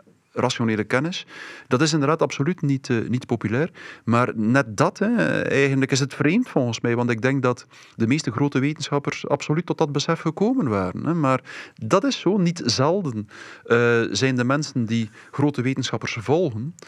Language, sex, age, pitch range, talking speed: English, male, 40-59, 115-145 Hz, 175 wpm